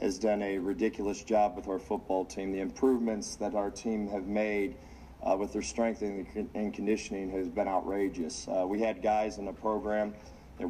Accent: American